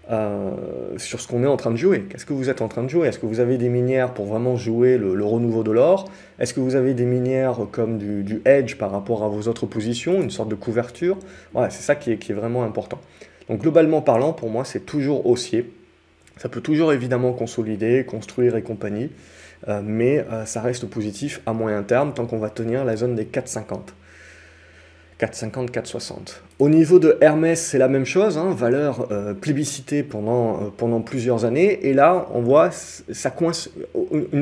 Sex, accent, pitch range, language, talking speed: male, French, 110-145 Hz, French, 205 wpm